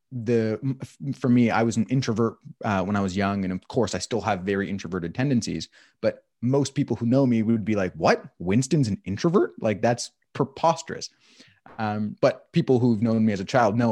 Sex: male